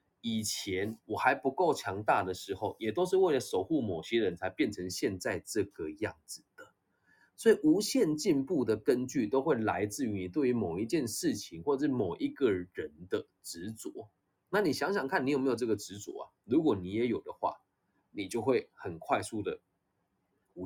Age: 20-39